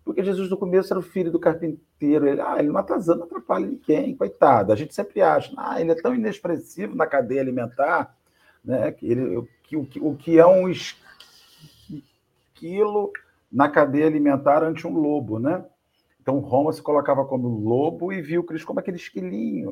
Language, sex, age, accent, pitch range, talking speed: Portuguese, male, 50-69, Brazilian, 145-185 Hz, 185 wpm